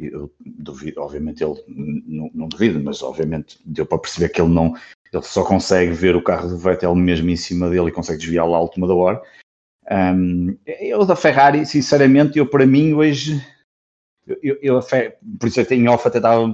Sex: male